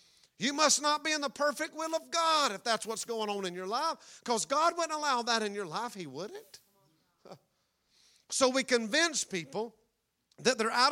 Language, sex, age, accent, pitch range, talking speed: English, male, 50-69, American, 225-290 Hz, 190 wpm